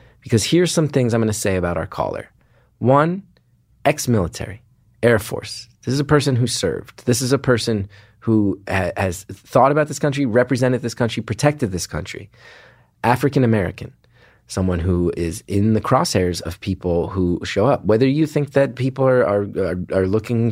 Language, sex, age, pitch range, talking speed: English, male, 30-49, 95-125 Hz, 165 wpm